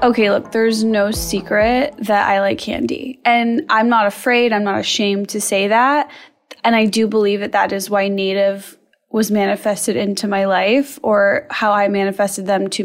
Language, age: English, 10-29